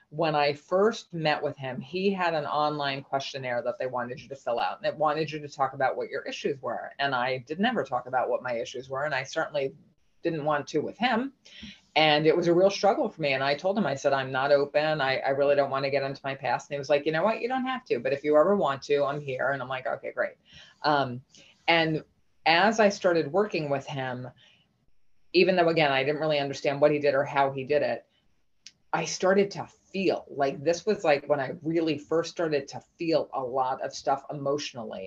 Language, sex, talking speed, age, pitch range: English, female, 240 wpm, 30-49, 140-170 Hz